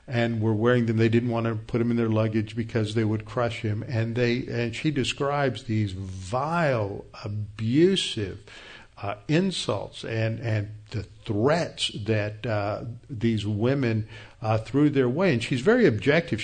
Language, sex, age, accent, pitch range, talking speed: English, male, 50-69, American, 110-135 Hz, 160 wpm